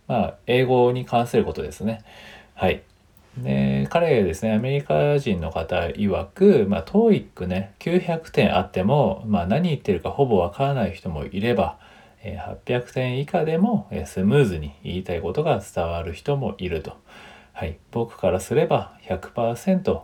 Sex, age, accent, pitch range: male, 40-59, native, 95-130 Hz